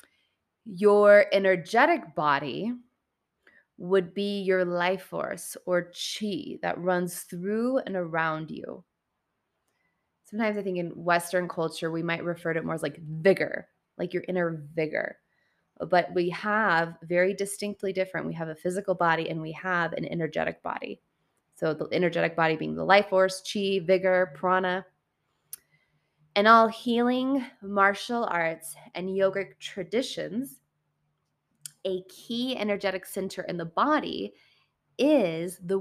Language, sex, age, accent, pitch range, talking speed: English, female, 20-39, American, 165-205 Hz, 135 wpm